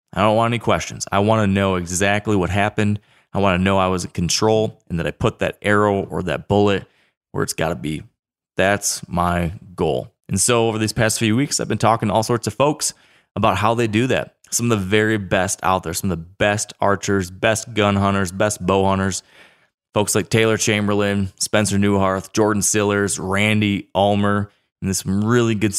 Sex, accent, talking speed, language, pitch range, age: male, American, 205 wpm, English, 95-110 Hz, 20-39